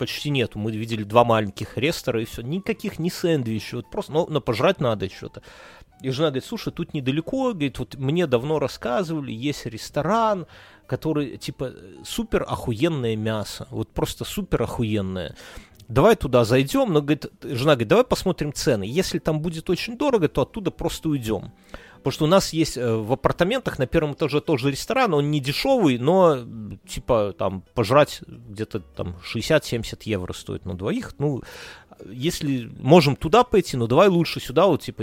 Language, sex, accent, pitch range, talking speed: Russian, male, native, 115-165 Hz, 165 wpm